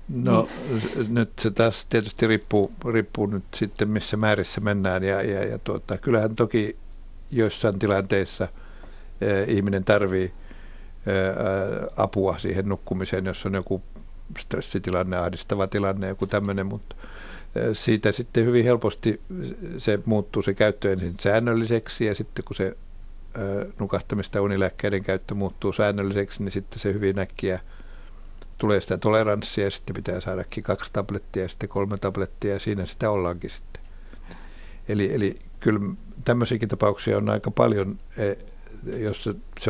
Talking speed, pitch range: 140 wpm, 95-105 Hz